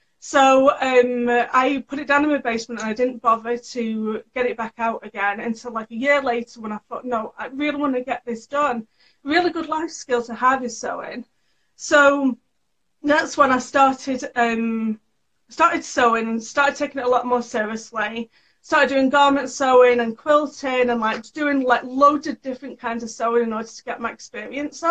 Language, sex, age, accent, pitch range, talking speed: Telugu, female, 40-59, British, 230-280 Hz, 200 wpm